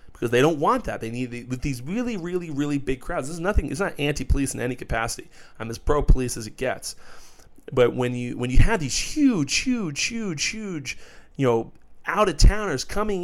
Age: 30-49